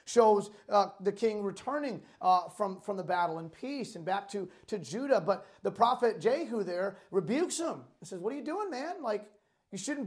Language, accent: English, American